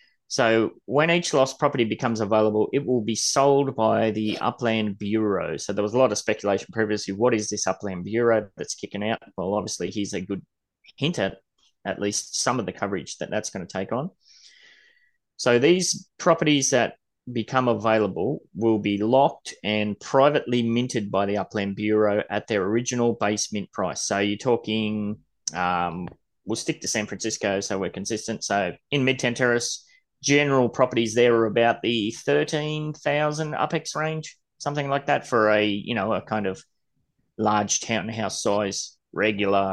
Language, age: English, 20-39